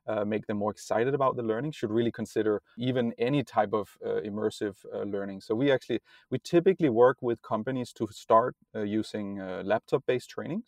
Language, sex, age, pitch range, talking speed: English, male, 30-49, 105-125 Hz, 195 wpm